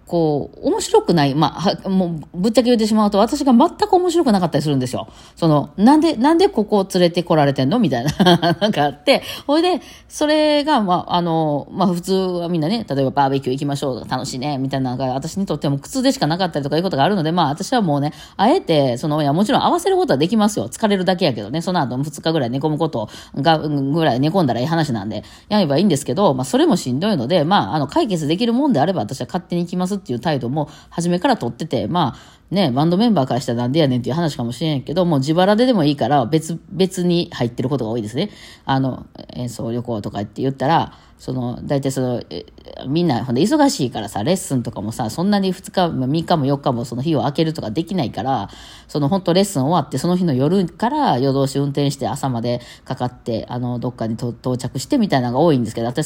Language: Japanese